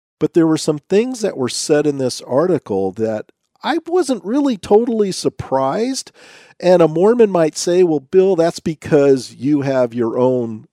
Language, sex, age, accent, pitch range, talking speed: English, male, 50-69, American, 115-180 Hz, 170 wpm